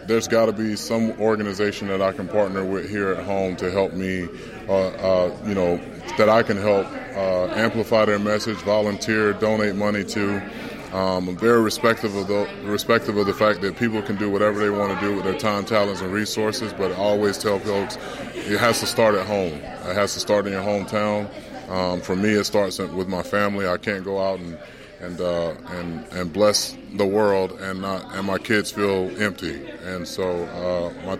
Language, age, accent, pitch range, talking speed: English, 30-49, American, 95-105 Hz, 200 wpm